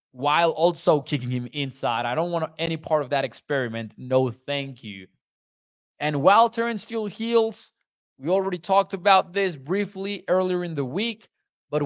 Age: 20-39